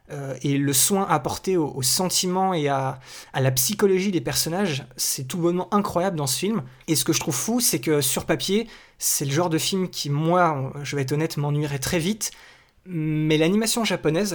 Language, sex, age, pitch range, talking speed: French, male, 20-39, 145-185 Hz, 195 wpm